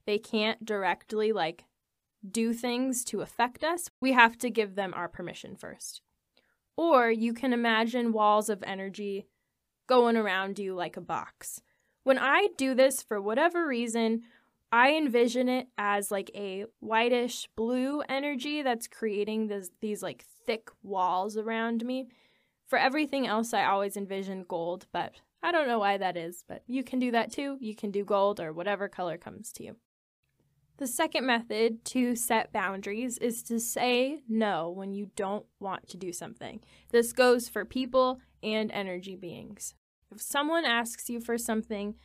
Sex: female